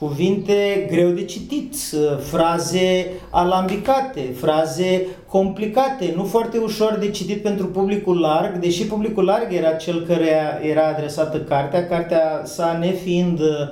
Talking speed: 125 wpm